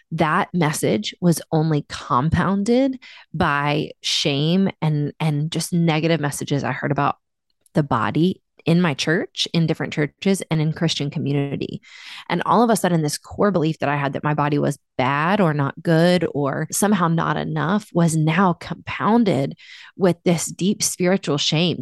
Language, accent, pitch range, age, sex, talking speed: English, American, 150-200 Hz, 20-39, female, 160 wpm